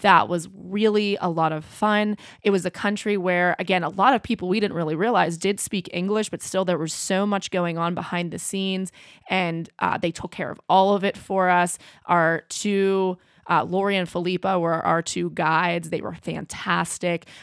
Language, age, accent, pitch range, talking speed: English, 20-39, American, 170-200 Hz, 205 wpm